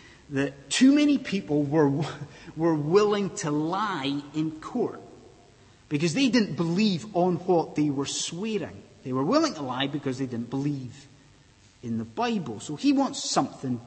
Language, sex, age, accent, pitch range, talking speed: English, male, 30-49, British, 130-210 Hz, 155 wpm